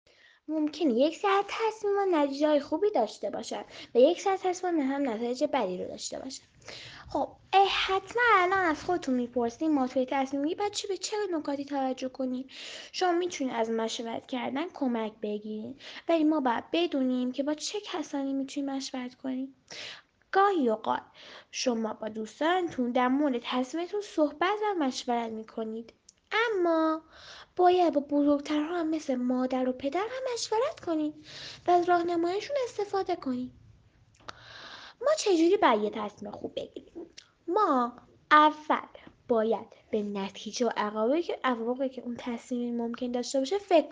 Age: 10-29